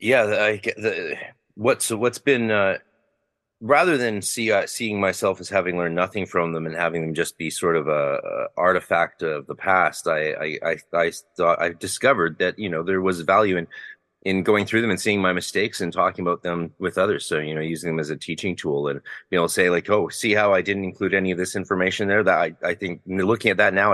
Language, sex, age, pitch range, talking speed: English, male, 30-49, 85-100 Hz, 240 wpm